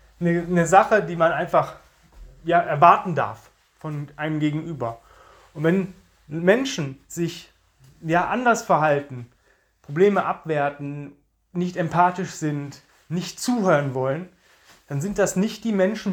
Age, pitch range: 30-49, 150-215 Hz